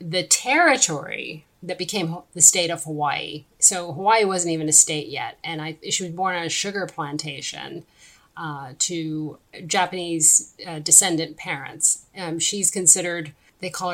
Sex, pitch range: female, 160-195 Hz